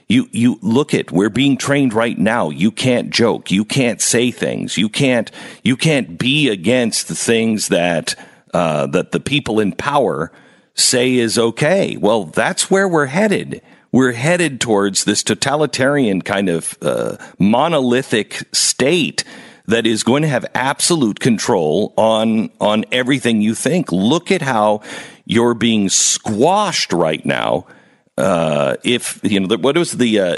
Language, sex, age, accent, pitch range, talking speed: English, male, 50-69, American, 115-160 Hz, 150 wpm